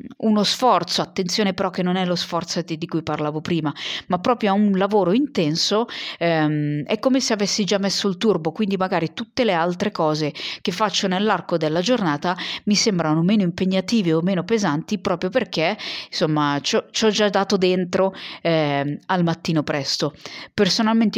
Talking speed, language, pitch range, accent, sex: 170 wpm, Italian, 160-200 Hz, native, female